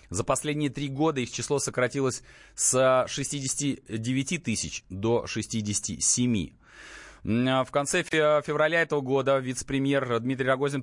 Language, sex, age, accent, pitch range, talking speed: Russian, male, 30-49, native, 110-145 Hz, 110 wpm